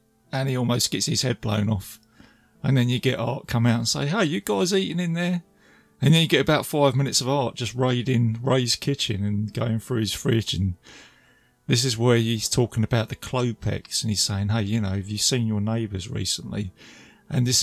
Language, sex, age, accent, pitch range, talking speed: English, male, 30-49, British, 105-135 Hz, 220 wpm